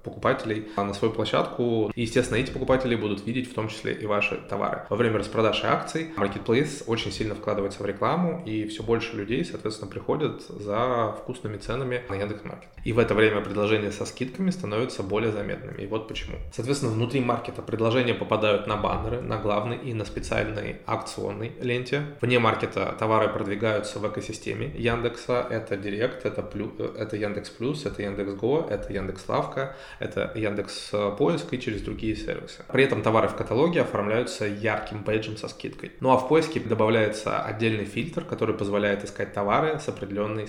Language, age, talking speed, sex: Russian, 20-39, 170 wpm, male